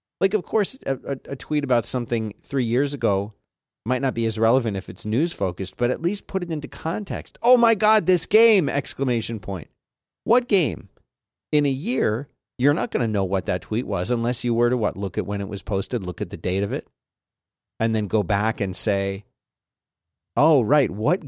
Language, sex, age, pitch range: English, male, 40-59, 105-150 Hz